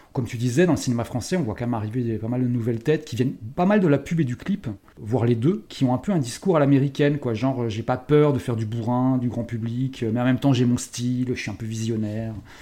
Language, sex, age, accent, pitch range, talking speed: French, male, 30-49, French, 115-145 Hz, 300 wpm